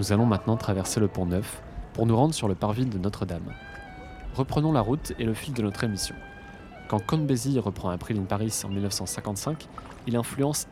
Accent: French